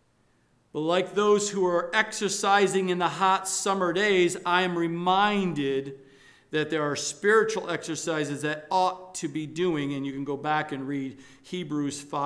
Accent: American